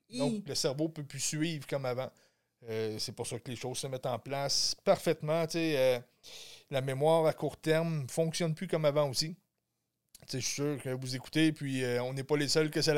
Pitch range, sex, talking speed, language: 140-170 Hz, male, 240 wpm, French